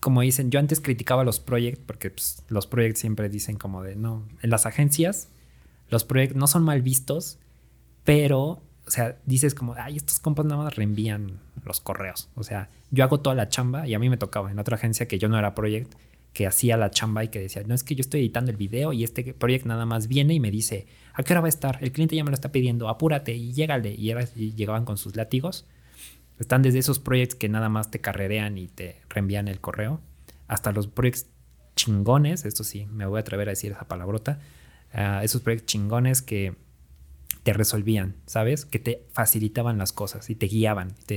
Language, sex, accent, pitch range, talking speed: Spanish, male, Mexican, 105-130 Hz, 220 wpm